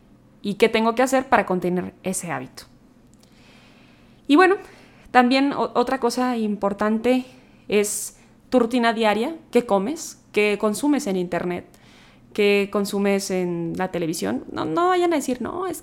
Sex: female